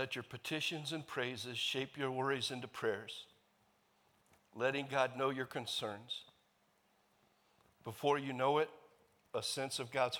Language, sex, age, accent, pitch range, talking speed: English, male, 60-79, American, 105-130 Hz, 135 wpm